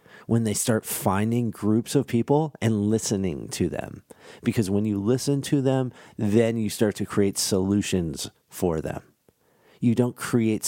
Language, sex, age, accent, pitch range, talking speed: English, male, 40-59, American, 95-115 Hz, 155 wpm